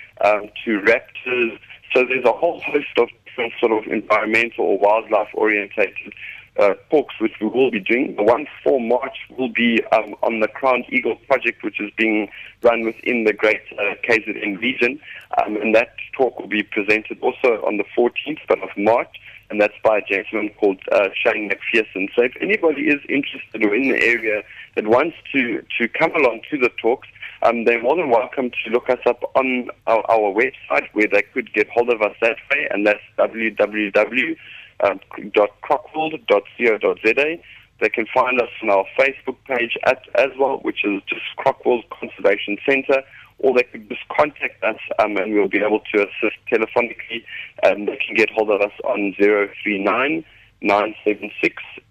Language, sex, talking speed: English, male, 175 wpm